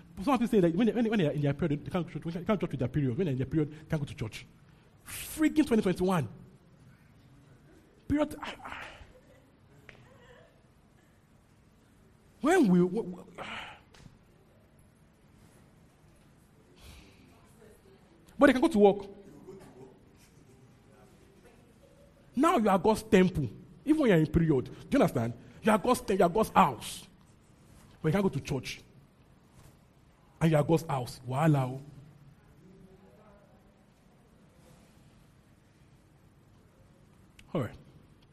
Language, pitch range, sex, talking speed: English, 145-200 Hz, male, 120 wpm